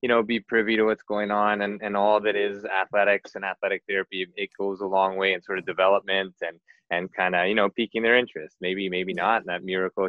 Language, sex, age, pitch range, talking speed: English, male, 20-39, 95-110 Hz, 245 wpm